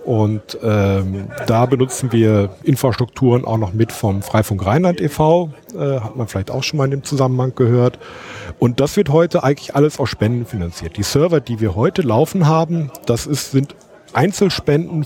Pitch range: 105-145 Hz